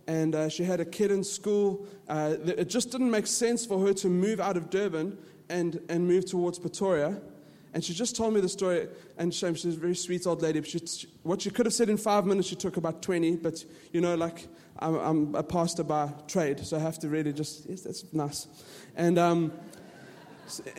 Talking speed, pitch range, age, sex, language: 225 wpm, 170-215 Hz, 20-39, male, English